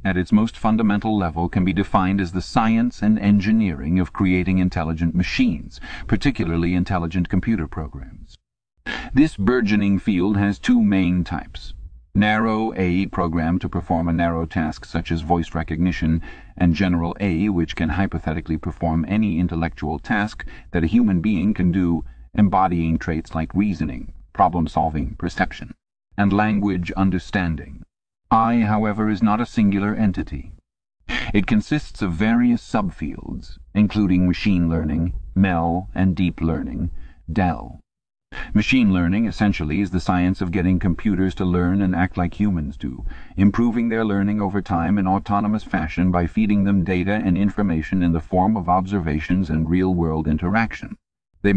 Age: 50-69